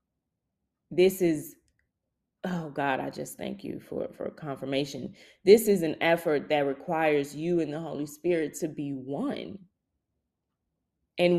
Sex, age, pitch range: female, 20-39, 150-205 Hz